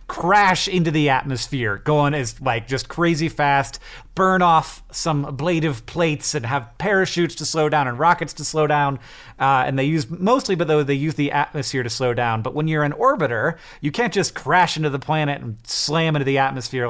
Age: 30-49